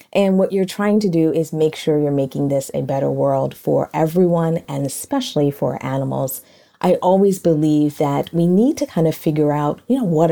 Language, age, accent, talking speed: English, 30-49, American, 205 wpm